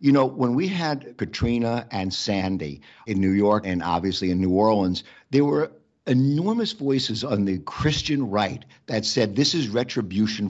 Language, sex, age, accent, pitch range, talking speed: English, male, 50-69, American, 100-125 Hz, 165 wpm